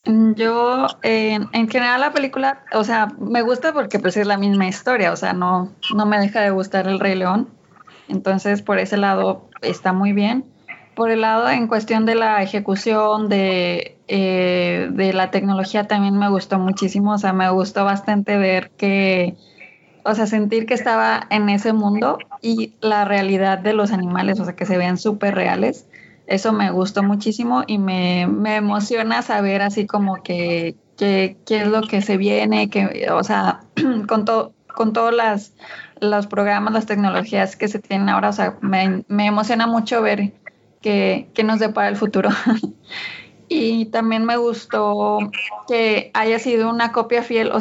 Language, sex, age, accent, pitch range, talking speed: Spanish, female, 20-39, Mexican, 195-225 Hz, 170 wpm